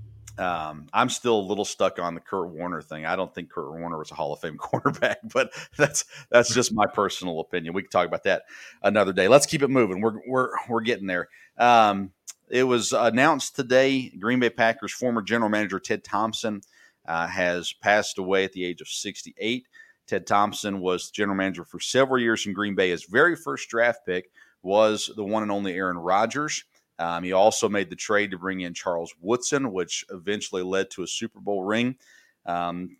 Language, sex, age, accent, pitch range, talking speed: English, male, 40-59, American, 90-115 Hz, 200 wpm